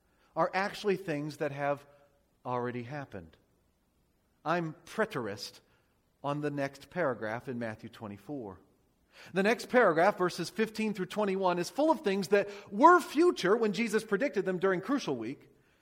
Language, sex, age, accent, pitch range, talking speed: English, male, 40-59, American, 135-215 Hz, 140 wpm